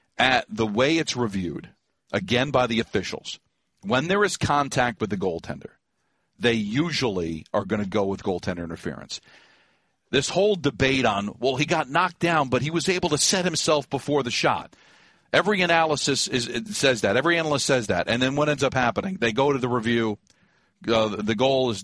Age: 40-59